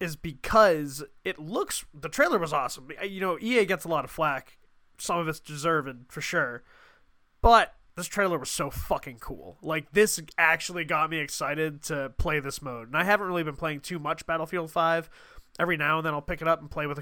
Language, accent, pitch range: English, American, 145-175 Hz